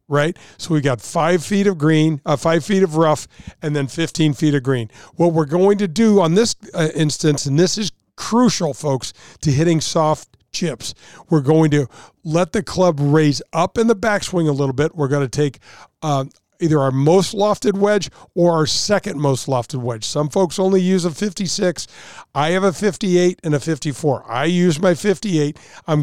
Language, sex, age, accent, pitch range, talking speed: English, male, 50-69, American, 145-185 Hz, 195 wpm